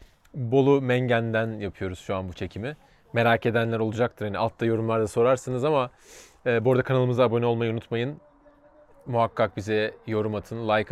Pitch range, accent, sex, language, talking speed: 115-145 Hz, native, male, Turkish, 150 wpm